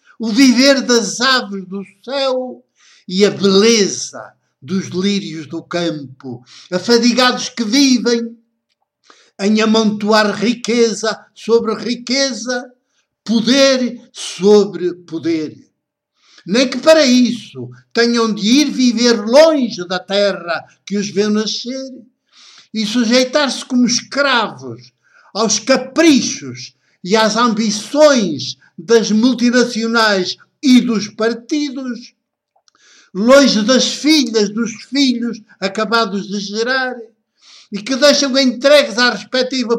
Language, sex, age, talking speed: Portuguese, male, 60-79, 100 wpm